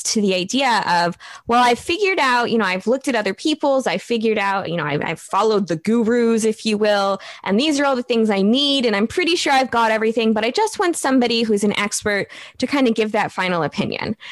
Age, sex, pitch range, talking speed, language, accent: 20-39, female, 205-280 Hz, 245 wpm, English, American